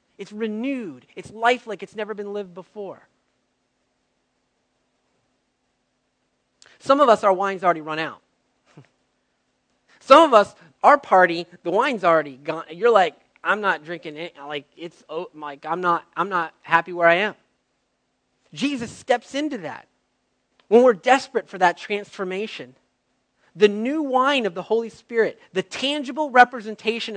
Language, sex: English, male